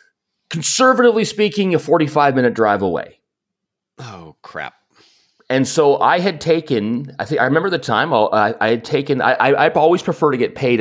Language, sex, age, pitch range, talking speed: English, male, 30-49, 90-135 Hz, 180 wpm